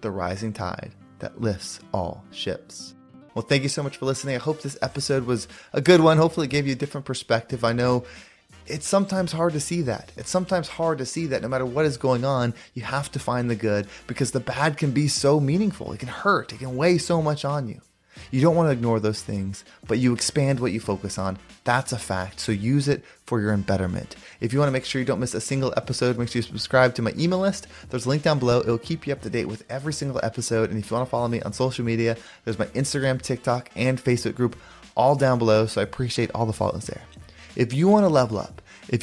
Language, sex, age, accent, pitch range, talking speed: English, male, 20-39, American, 115-140 Hz, 250 wpm